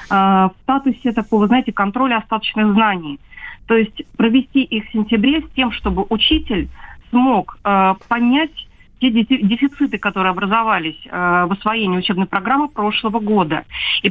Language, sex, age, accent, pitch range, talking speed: Russian, female, 40-59, native, 190-245 Hz, 135 wpm